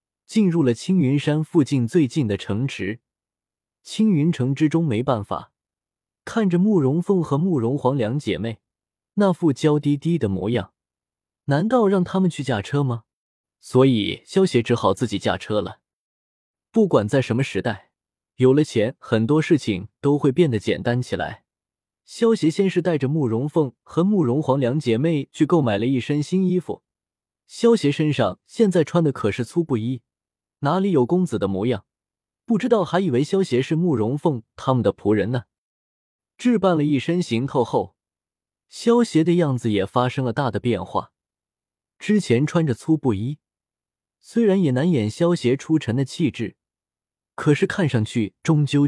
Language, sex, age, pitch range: Chinese, male, 20-39, 115-170 Hz